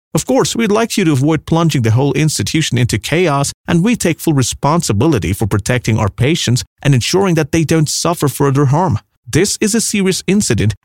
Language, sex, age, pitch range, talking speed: English, male, 30-49, 105-155 Hz, 195 wpm